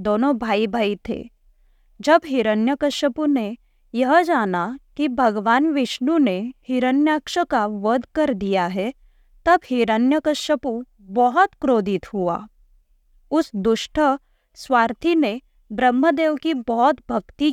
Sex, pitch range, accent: female, 225-295 Hz, native